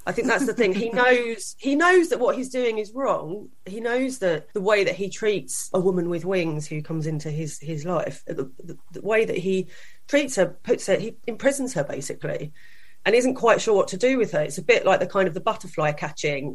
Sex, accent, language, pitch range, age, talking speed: female, British, English, 160-215 Hz, 30-49, 240 wpm